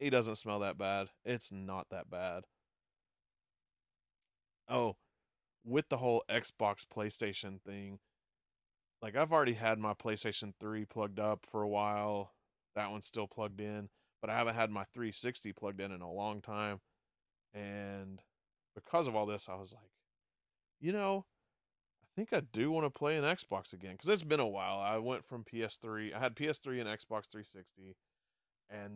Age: 30-49